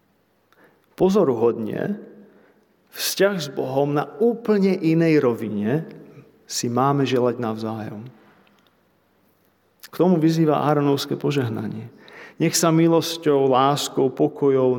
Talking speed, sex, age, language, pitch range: 90 wpm, male, 40-59, Slovak, 125-155 Hz